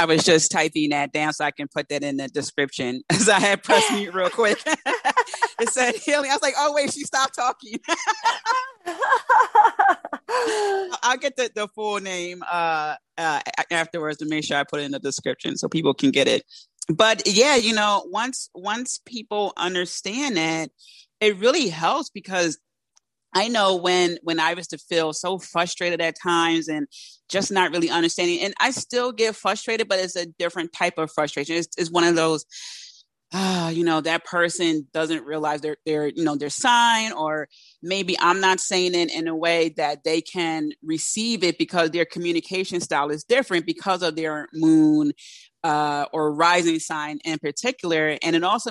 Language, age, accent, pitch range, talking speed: English, 30-49, American, 160-215 Hz, 180 wpm